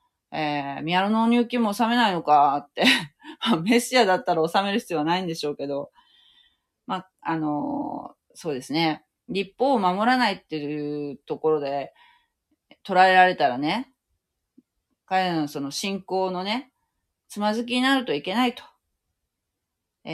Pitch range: 150-240 Hz